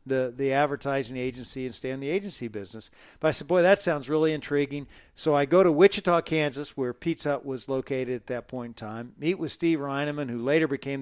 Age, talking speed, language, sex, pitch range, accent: 50-69, 220 wpm, English, male, 135-170 Hz, American